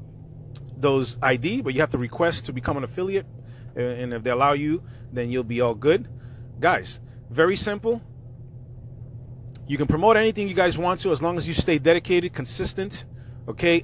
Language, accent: English, American